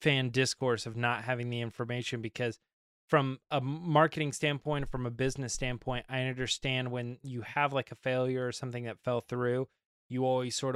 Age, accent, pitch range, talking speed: 20-39, American, 115-135 Hz, 180 wpm